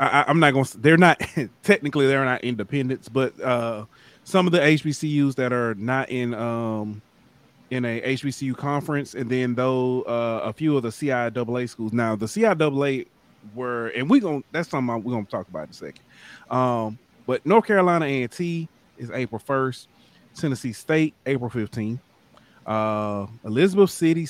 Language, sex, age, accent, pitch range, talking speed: English, male, 30-49, American, 110-145 Hz, 165 wpm